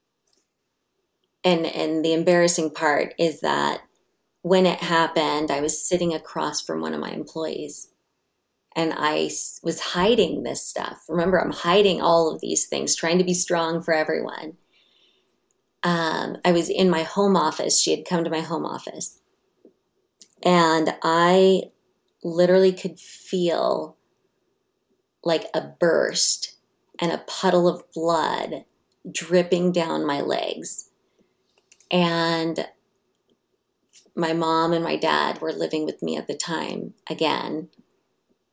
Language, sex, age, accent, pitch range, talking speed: English, female, 30-49, American, 160-190 Hz, 130 wpm